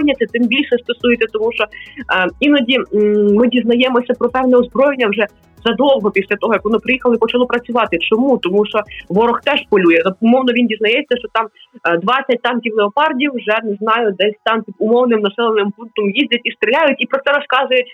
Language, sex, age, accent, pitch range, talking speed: Ukrainian, female, 20-39, native, 215-260 Hz, 180 wpm